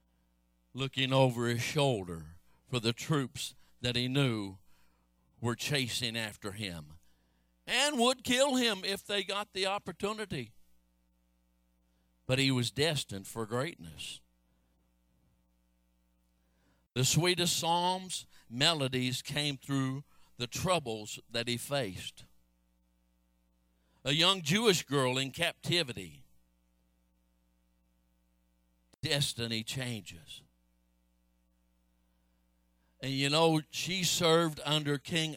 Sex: male